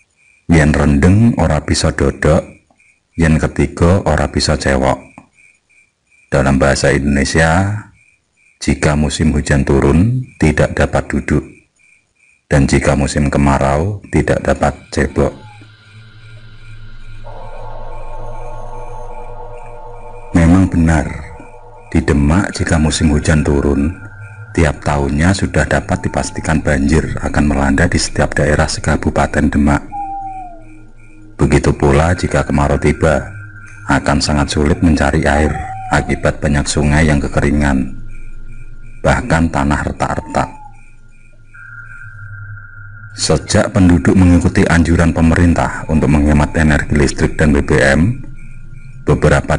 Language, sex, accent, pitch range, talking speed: Indonesian, male, native, 75-110 Hz, 95 wpm